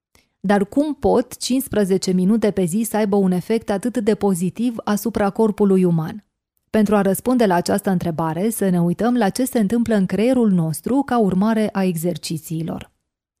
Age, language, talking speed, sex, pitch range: 20-39, Hungarian, 165 wpm, female, 190-230 Hz